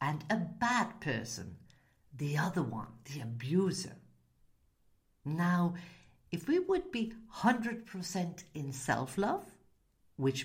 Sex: female